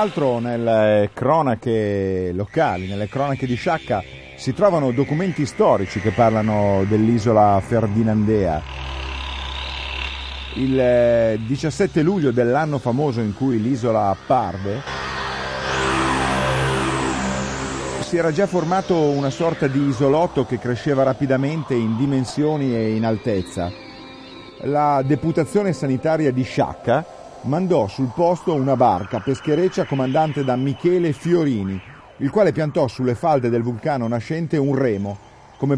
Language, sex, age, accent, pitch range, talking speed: Italian, male, 50-69, native, 110-155 Hz, 110 wpm